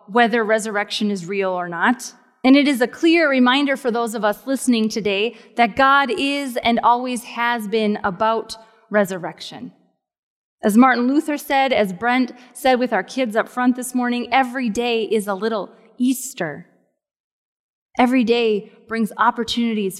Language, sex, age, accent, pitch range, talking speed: English, female, 20-39, American, 215-270 Hz, 155 wpm